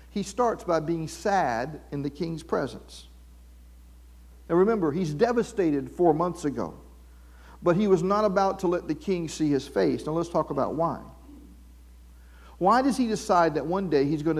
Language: English